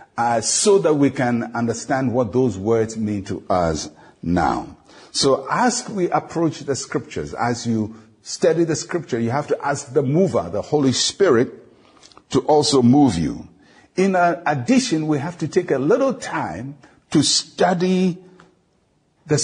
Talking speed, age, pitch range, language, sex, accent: 155 wpm, 60-79, 115-160 Hz, English, male, Nigerian